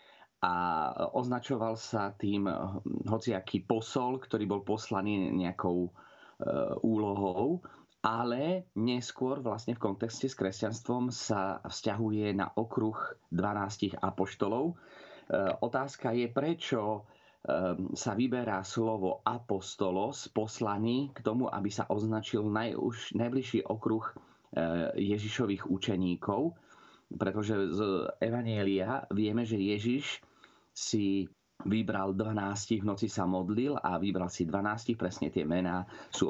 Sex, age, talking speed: male, 30-49, 105 wpm